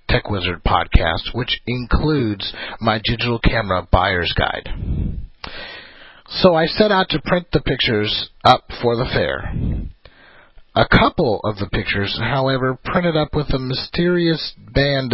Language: English